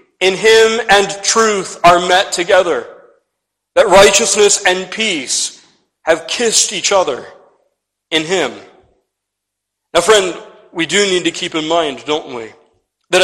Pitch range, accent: 130-180 Hz, American